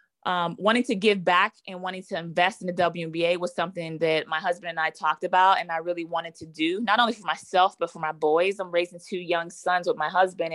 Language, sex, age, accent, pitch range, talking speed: English, female, 20-39, American, 165-185 Hz, 245 wpm